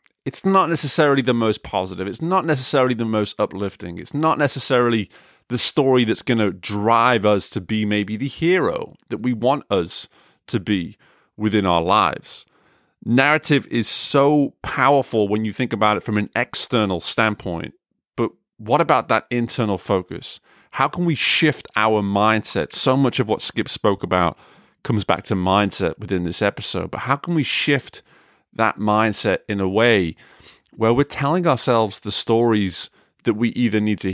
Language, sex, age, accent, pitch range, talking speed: English, male, 30-49, British, 105-145 Hz, 170 wpm